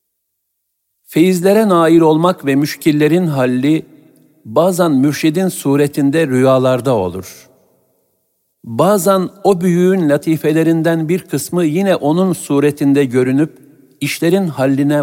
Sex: male